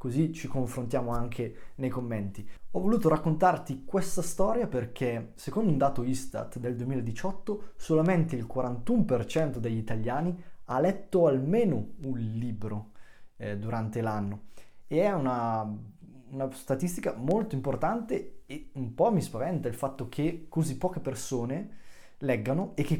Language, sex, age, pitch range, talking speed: Italian, male, 20-39, 120-170 Hz, 135 wpm